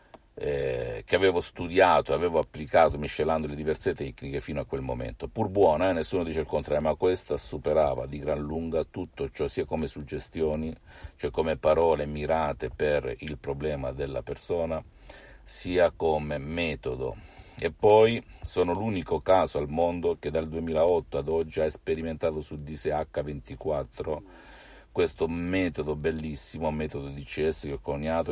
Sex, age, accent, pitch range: male, 50-69, native, 75-90 Hz